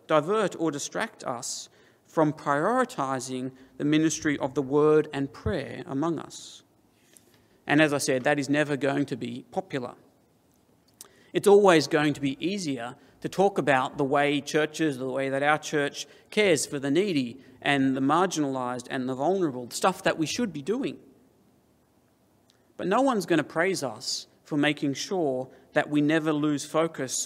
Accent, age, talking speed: Australian, 40-59, 165 wpm